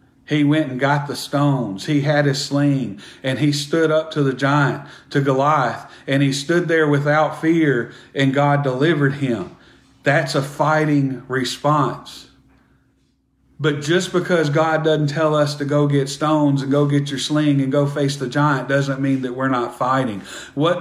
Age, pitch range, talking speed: 40-59, 135-150 Hz, 175 wpm